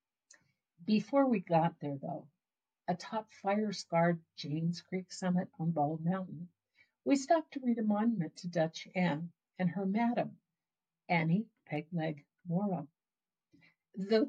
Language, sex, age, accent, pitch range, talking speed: English, female, 60-79, American, 170-210 Hz, 120 wpm